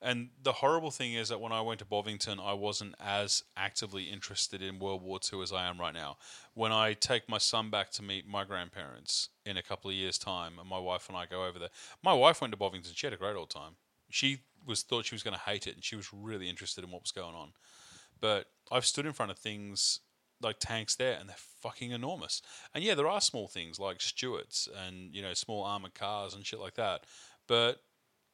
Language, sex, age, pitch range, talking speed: English, male, 30-49, 100-120 Hz, 235 wpm